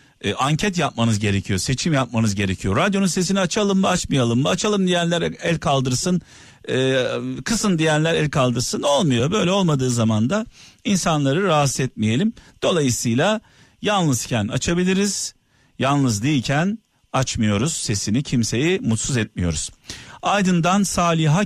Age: 50-69